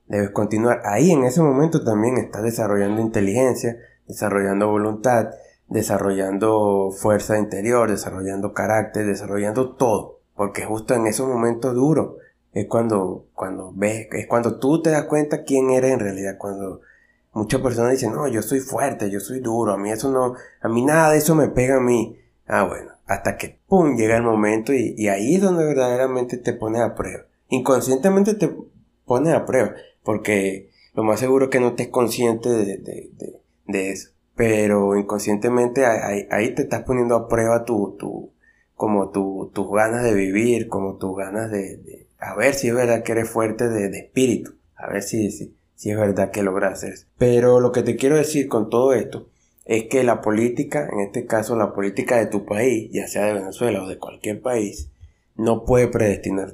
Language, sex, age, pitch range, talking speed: Spanish, male, 20-39, 100-125 Hz, 185 wpm